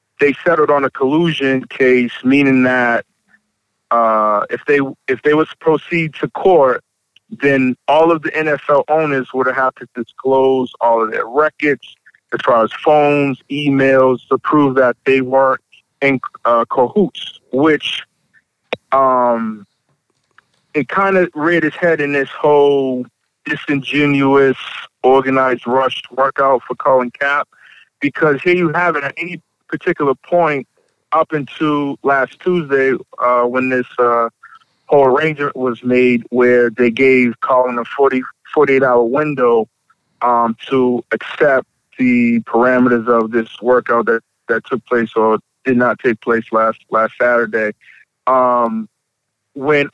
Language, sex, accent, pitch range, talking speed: English, male, American, 125-145 Hz, 140 wpm